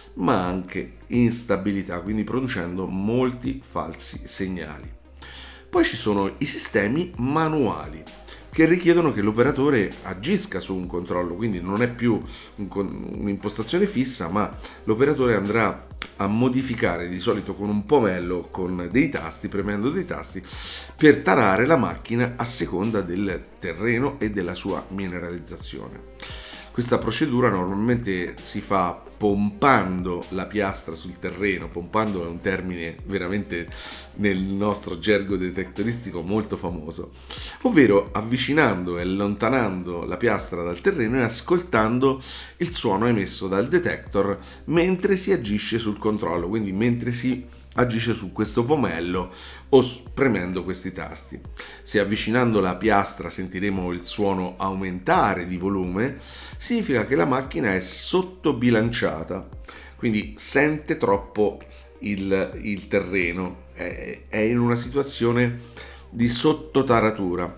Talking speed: 120 wpm